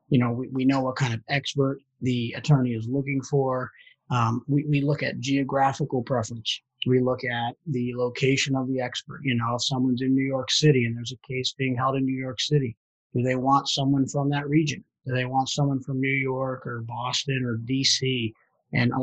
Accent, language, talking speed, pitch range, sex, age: American, English, 210 wpm, 125-140 Hz, male, 30-49